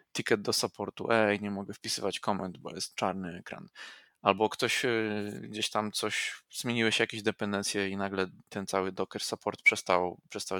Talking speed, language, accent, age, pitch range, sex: 160 wpm, Polish, native, 20-39, 100-120 Hz, male